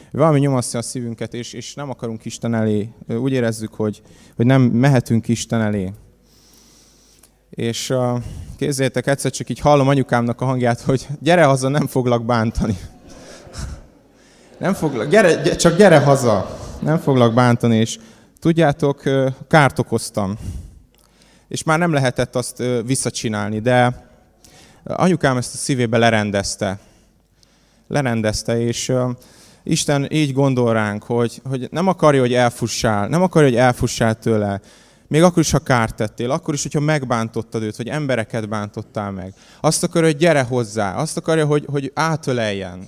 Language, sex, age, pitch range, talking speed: Hungarian, male, 20-39, 115-145 Hz, 140 wpm